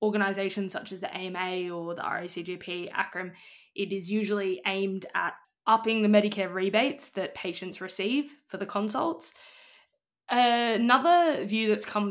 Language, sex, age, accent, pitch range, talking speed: English, female, 20-39, Australian, 185-215 Hz, 140 wpm